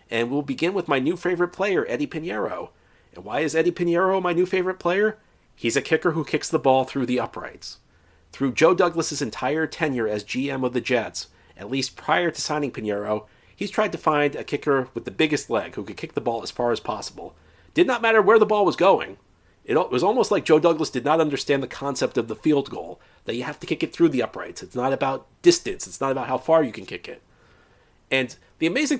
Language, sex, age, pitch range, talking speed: English, male, 40-59, 120-165 Hz, 230 wpm